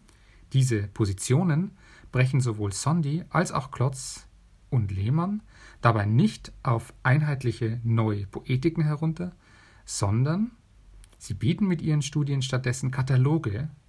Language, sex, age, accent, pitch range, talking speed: German, male, 40-59, German, 110-140 Hz, 110 wpm